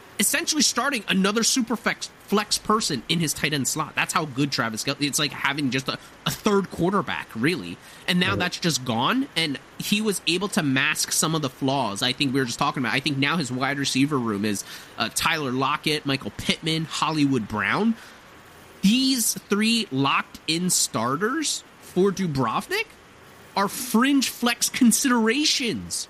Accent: American